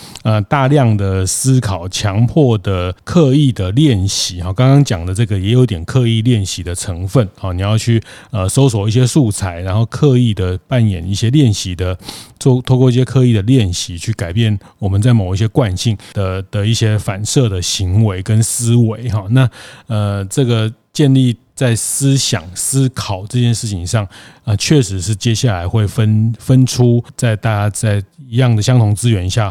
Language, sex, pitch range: Chinese, male, 100-125 Hz